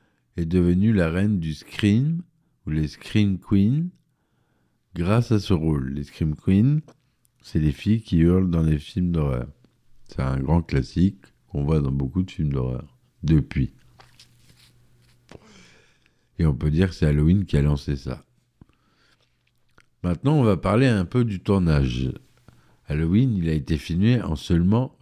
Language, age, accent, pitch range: French, 50-69, French, 75-100 Hz